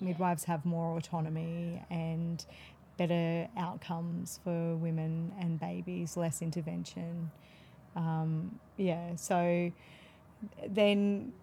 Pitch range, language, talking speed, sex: 170-195 Hz, English, 90 wpm, female